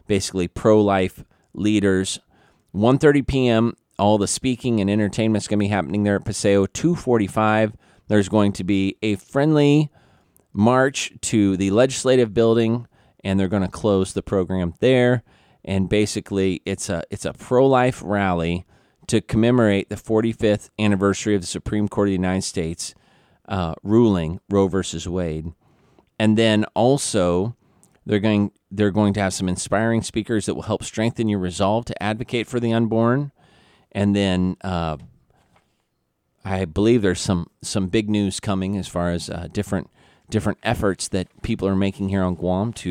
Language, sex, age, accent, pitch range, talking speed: English, male, 30-49, American, 95-110 Hz, 160 wpm